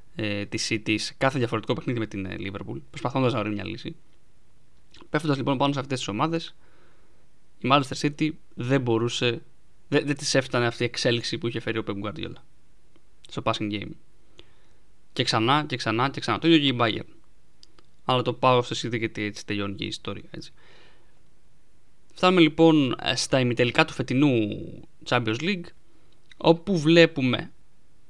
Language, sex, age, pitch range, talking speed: Greek, male, 20-39, 115-160 Hz, 160 wpm